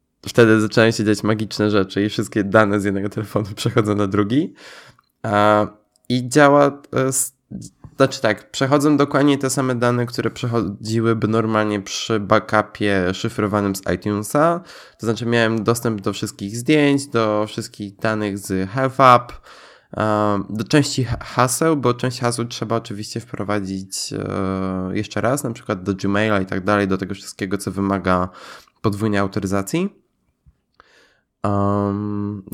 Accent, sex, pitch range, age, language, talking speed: native, male, 100-125 Hz, 20-39, Polish, 130 wpm